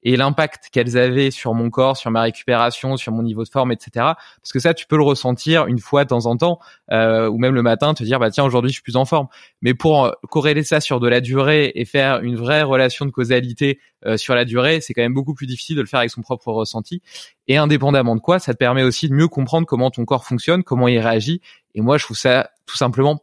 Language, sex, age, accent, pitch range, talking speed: French, male, 20-39, French, 115-145 Hz, 265 wpm